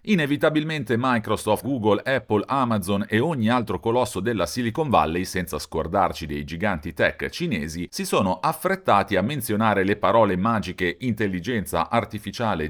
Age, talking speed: 40-59, 130 wpm